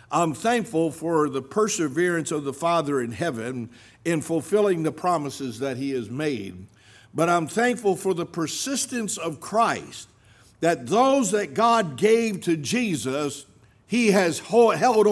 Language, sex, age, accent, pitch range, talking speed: English, male, 60-79, American, 145-205 Hz, 145 wpm